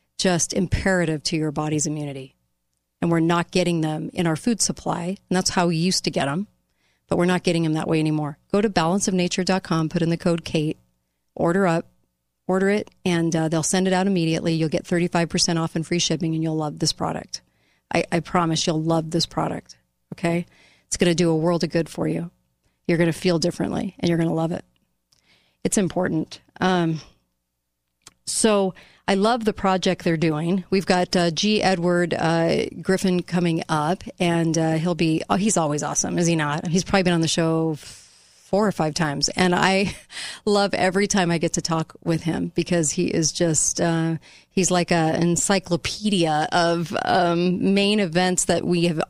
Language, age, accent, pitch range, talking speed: English, 40-59, American, 160-180 Hz, 195 wpm